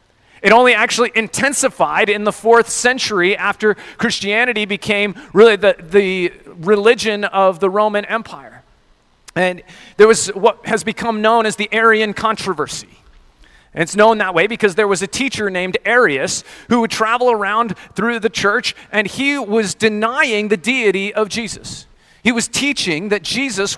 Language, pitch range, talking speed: English, 190-235 Hz, 155 wpm